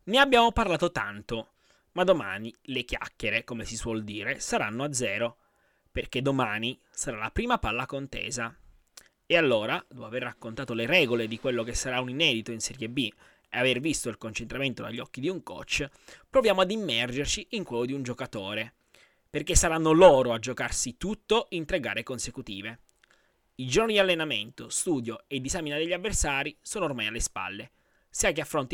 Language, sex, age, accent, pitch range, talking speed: Italian, male, 20-39, native, 120-190 Hz, 170 wpm